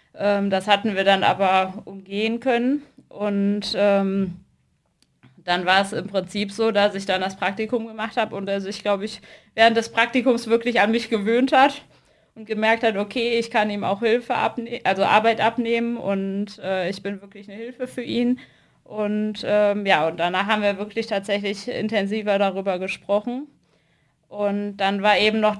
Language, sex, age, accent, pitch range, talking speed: German, female, 20-39, German, 195-225 Hz, 175 wpm